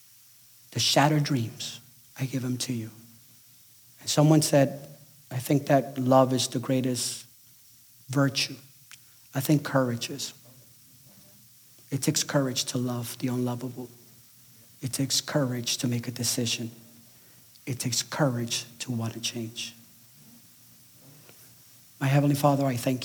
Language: English